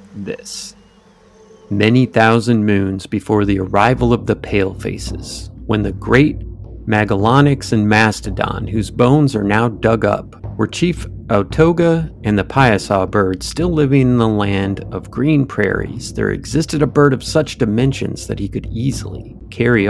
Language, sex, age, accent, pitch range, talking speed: English, male, 30-49, American, 100-125 Hz, 150 wpm